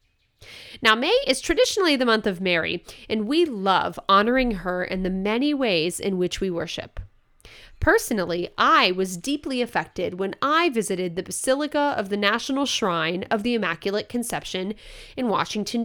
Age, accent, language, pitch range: 30-49, American, English, 185-260 Hz